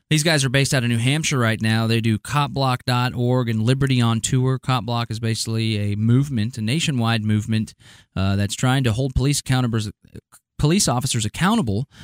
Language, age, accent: English, 20-39, American